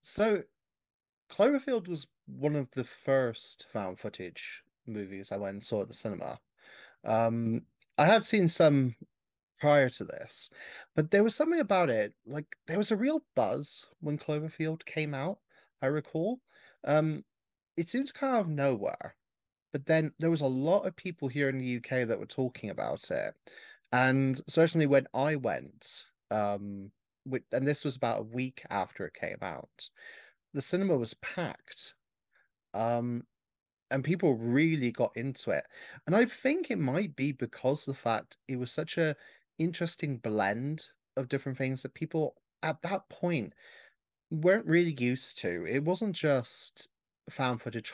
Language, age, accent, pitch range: English, 30-49, British, 125-170 Hz